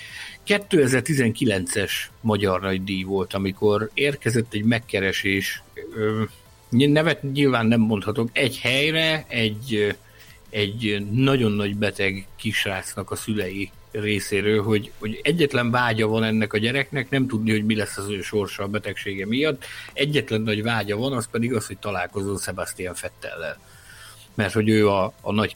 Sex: male